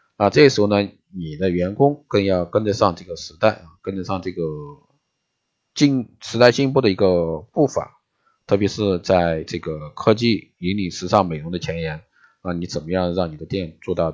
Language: Chinese